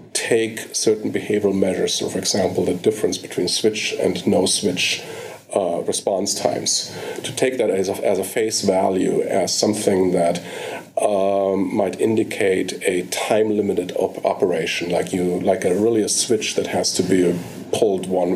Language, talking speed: English, 150 wpm